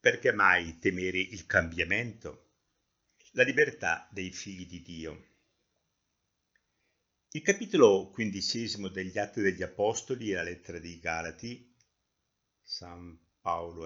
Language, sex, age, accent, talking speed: Italian, male, 60-79, native, 110 wpm